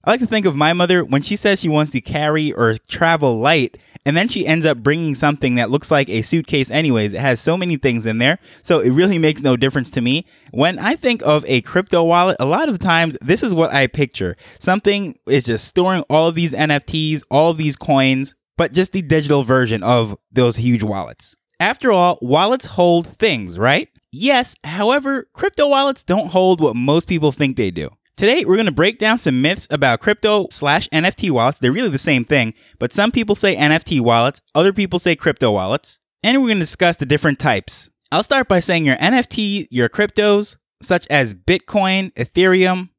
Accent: American